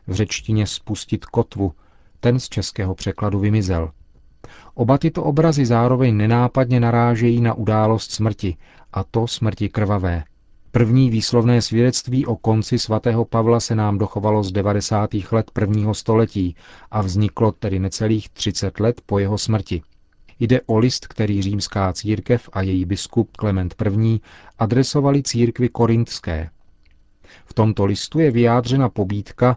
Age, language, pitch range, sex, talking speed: 40-59, Czech, 100-120 Hz, male, 135 wpm